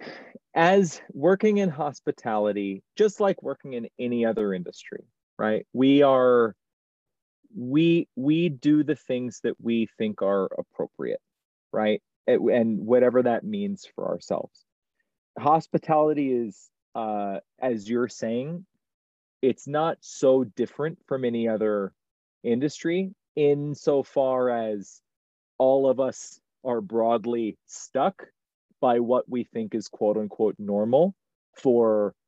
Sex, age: male, 30-49